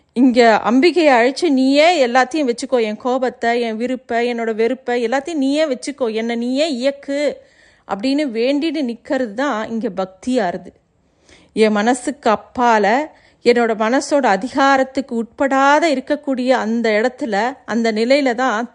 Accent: native